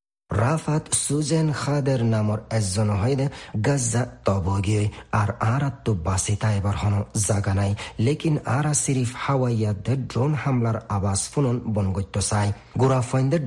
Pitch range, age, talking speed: 105-125 Hz, 40-59, 50 wpm